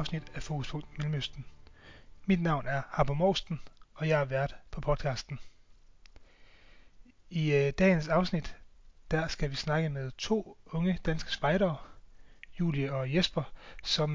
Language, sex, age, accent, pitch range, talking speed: Danish, male, 30-49, native, 140-165 Hz, 125 wpm